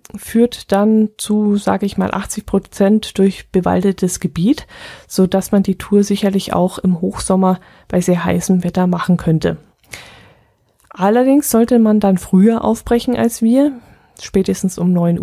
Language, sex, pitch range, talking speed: German, female, 185-220 Hz, 140 wpm